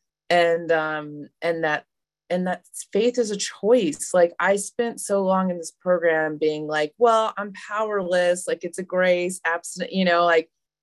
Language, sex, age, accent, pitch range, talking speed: English, female, 20-39, American, 165-225 Hz, 170 wpm